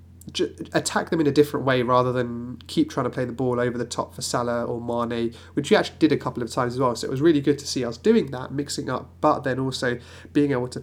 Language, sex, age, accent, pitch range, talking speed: English, male, 30-49, British, 115-130 Hz, 270 wpm